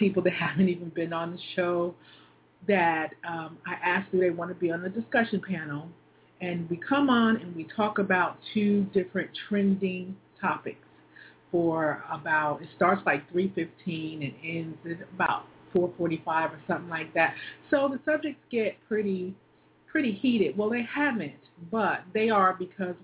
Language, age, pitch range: English, 40-59, 165-200 Hz